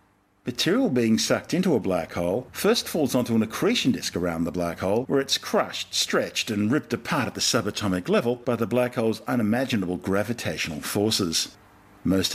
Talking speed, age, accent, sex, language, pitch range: 175 wpm, 50-69, Australian, male, English, 100-125 Hz